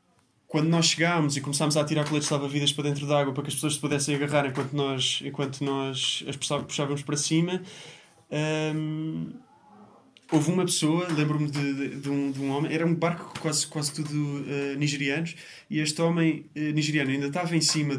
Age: 20-39